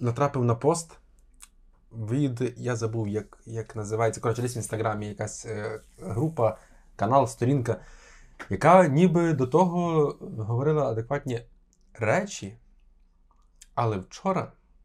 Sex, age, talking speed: male, 20-39, 105 wpm